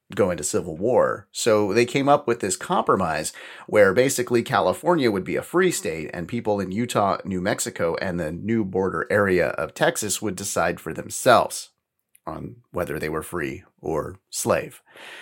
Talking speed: 170 wpm